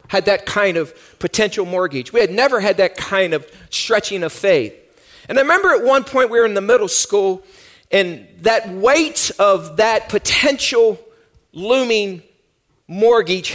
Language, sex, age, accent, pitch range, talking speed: English, male, 40-59, American, 195-295 Hz, 160 wpm